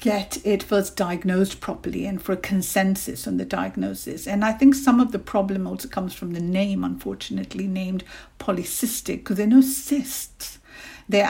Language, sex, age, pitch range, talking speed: English, female, 60-79, 185-240 Hz, 170 wpm